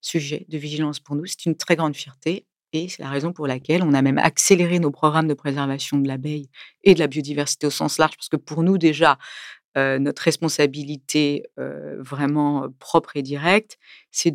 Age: 40-59